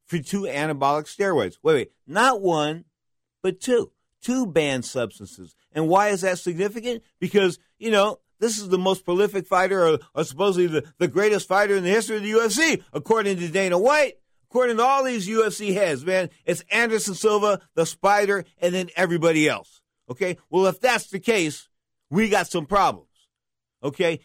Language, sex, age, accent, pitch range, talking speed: English, male, 50-69, American, 155-205 Hz, 175 wpm